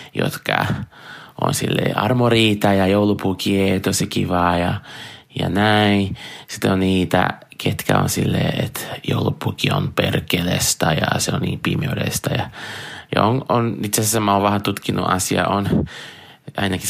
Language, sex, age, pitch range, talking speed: Finnish, male, 20-39, 95-115 Hz, 140 wpm